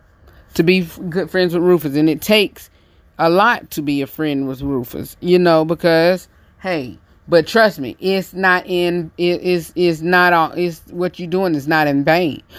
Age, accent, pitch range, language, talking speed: 30-49, American, 155-205 Hz, English, 195 wpm